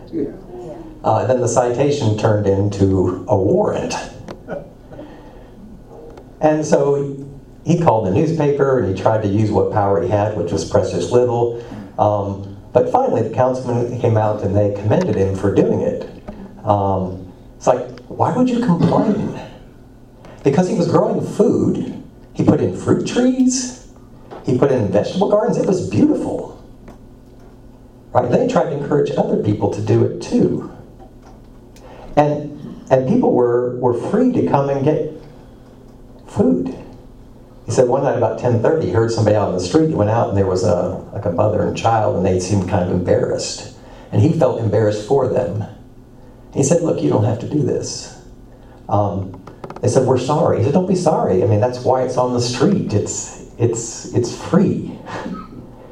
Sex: male